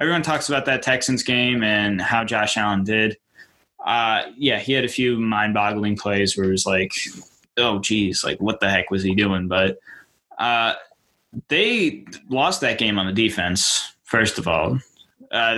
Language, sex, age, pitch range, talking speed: English, male, 10-29, 105-130 Hz, 175 wpm